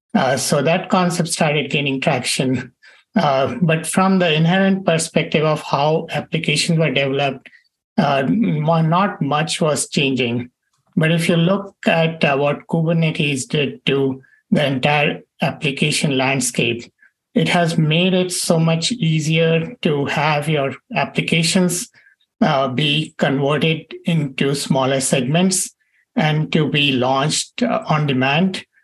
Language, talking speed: English, 125 wpm